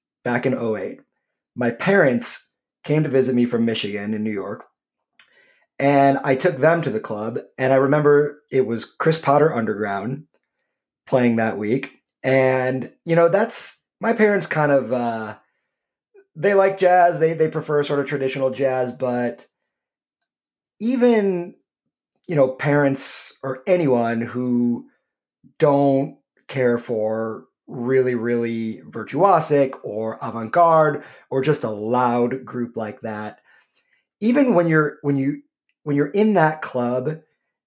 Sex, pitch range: male, 120-160 Hz